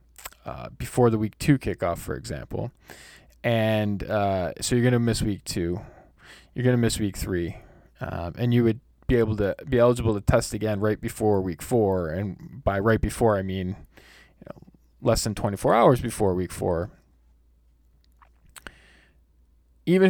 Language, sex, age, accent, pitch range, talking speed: English, male, 20-39, American, 90-120 Hz, 160 wpm